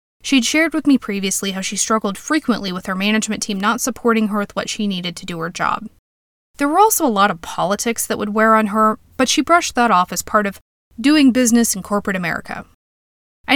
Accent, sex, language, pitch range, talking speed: American, female, English, 200-265 Hz, 220 wpm